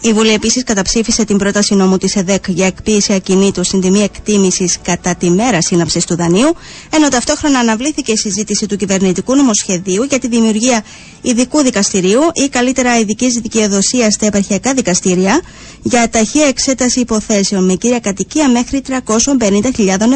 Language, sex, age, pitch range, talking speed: Greek, female, 20-39, 190-230 Hz, 150 wpm